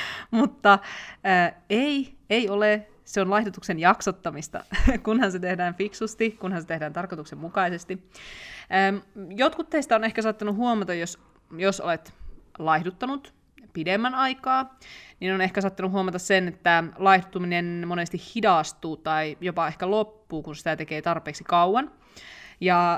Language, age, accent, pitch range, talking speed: Finnish, 20-39, native, 165-200 Hz, 130 wpm